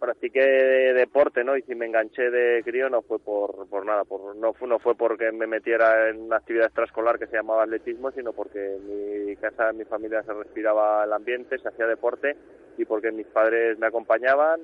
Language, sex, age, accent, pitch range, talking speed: Spanish, male, 20-39, Spanish, 110-135 Hz, 215 wpm